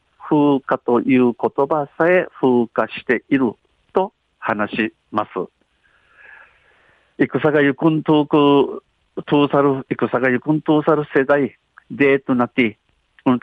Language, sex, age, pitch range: Japanese, male, 50-69, 115-135 Hz